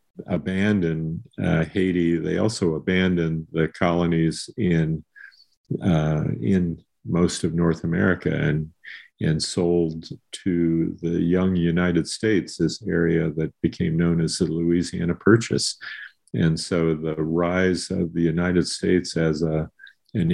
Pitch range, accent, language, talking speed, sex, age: 80-90 Hz, American, English, 125 wpm, male, 50-69